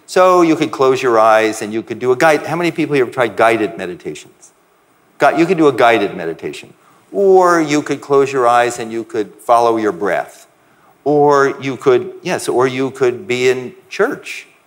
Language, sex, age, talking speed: English, male, 50-69, 195 wpm